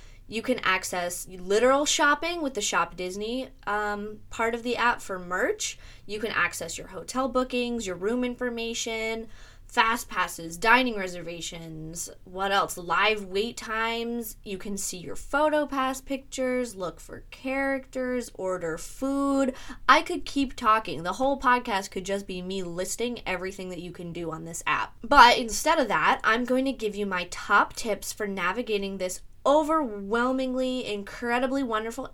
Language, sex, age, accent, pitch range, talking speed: English, female, 20-39, American, 190-250 Hz, 155 wpm